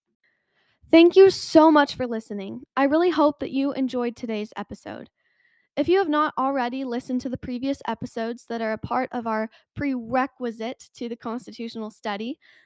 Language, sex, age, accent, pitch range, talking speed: English, female, 10-29, American, 230-295 Hz, 165 wpm